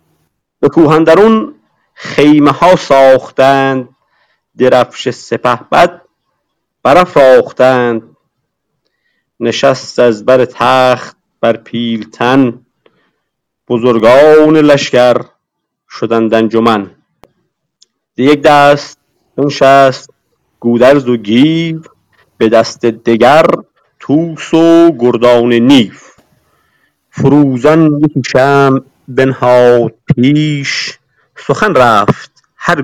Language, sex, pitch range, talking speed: Persian, male, 125-155 Hz, 70 wpm